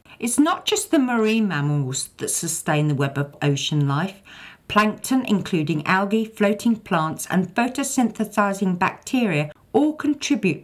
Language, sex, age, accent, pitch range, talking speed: English, female, 50-69, British, 155-220 Hz, 130 wpm